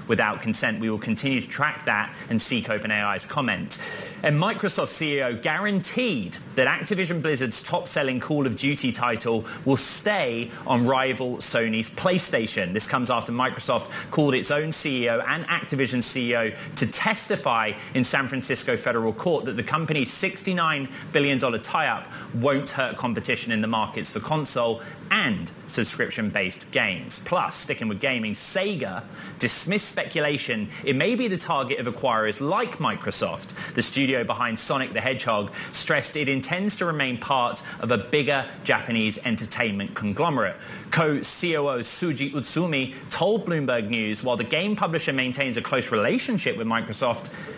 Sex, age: male, 30-49